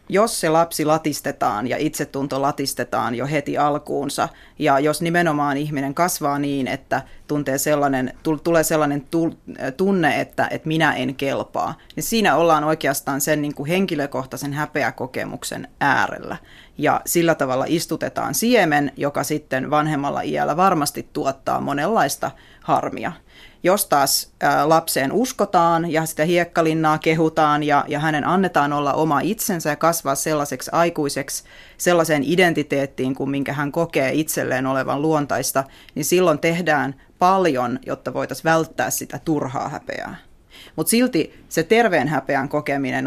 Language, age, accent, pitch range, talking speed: Finnish, 30-49, native, 140-160 Hz, 125 wpm